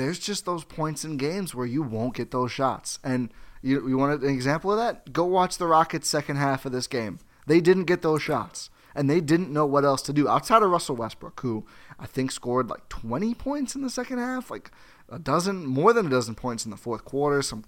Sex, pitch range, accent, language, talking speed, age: male, 115-155 Hz, American, English, 240 wpm, 20-39